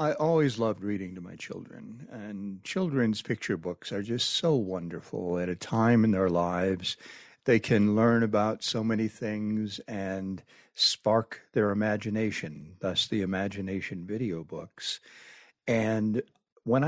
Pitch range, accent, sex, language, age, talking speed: 100-135 Hz, American, male, English, 60-79, 140 wpm